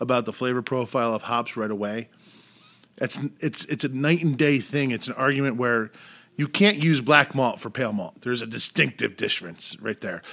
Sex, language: male, English